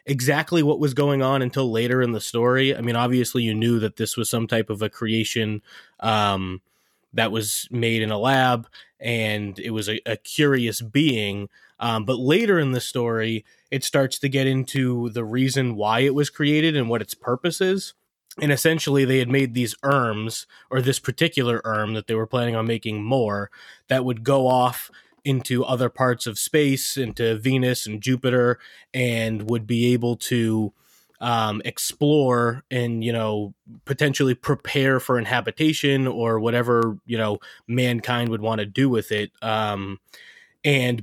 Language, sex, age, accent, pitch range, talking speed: English, male, 20-39, American, 110-135 Hz, 170 wpm